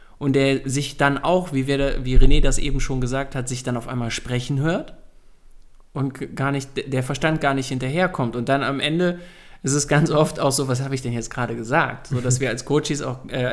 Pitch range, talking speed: 130-170 Hz, 230 wpm